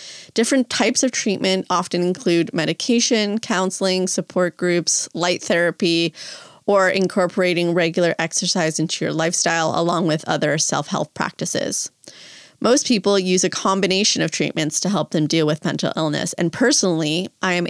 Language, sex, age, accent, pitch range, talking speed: English, female, 30-49, American, 165-200 Hz, 140 wpm